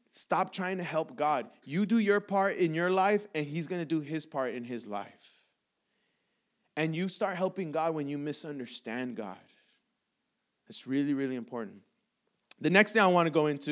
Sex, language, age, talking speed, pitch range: male, English, 20-39, 190 wpm, 155-220 Hz